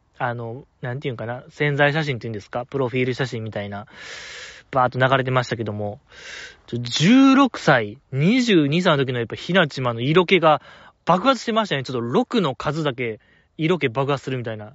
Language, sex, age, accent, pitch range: Japanese, male, 20-39, native, 120-165 Hz